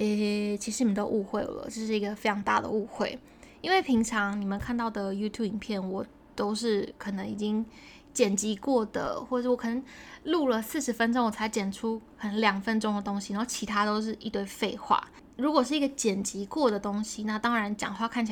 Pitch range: 210-250 Hz